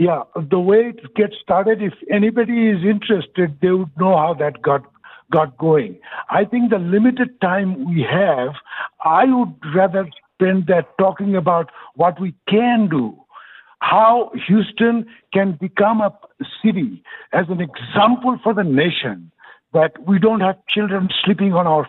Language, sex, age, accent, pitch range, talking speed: English, male, 60-79, Indian, 160-205 Hz, 155 wpm